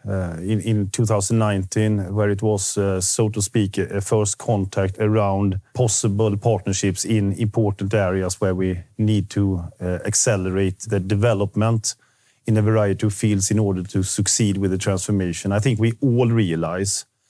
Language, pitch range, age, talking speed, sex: English, 95-110 Hz, 40-59, 155 wpm, male